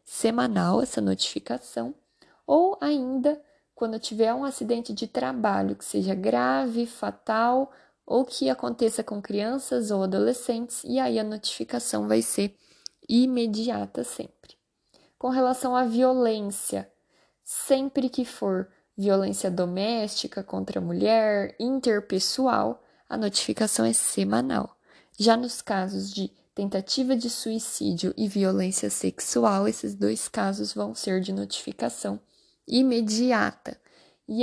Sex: female